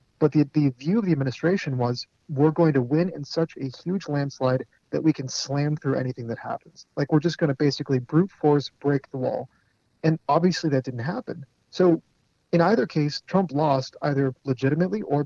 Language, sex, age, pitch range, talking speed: English, male, 30-49, 130-160 Hz, 195 wpm